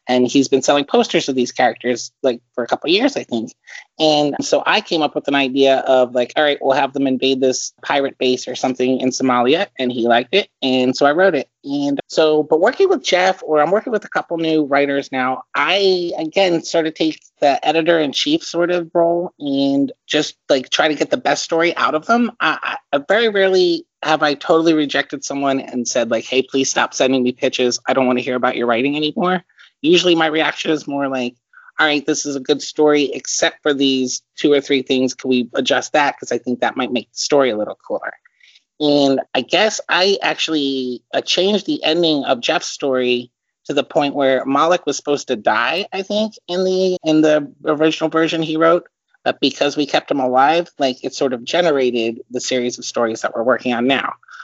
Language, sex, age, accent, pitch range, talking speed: English, male, 30-49, American, 130-170 Hz, 215 wpm